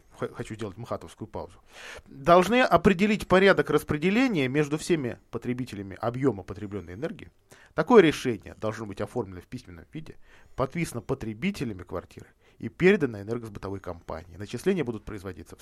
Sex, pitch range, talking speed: male, 110-155 Hz, 125 wpm